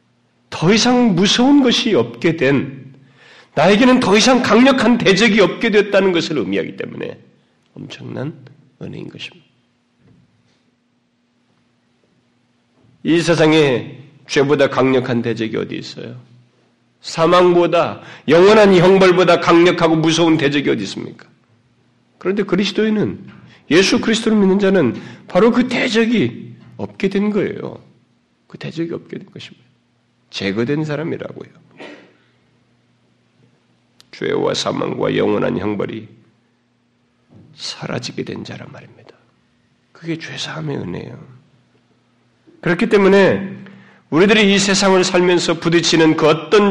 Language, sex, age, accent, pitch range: Korean, male, 40-59, native, 120-195 Hz